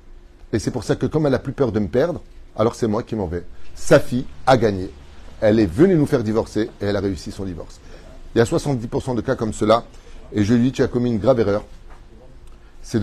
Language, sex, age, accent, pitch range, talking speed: French, male, 30-49, French, 105-130 Hz, 250 wpm